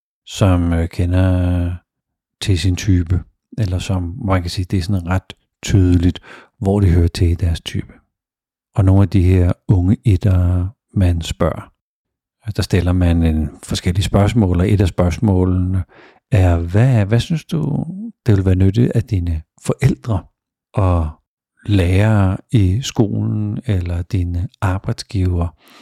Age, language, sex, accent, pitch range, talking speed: 50-69, Danish, male, native, 90-105 Hz, 135 wpm